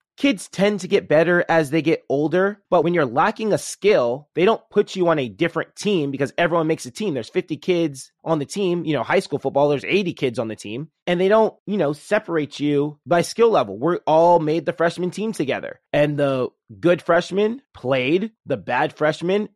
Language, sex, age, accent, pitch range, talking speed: English, male, 20-39, American, 145-190 Hz, 215 wpm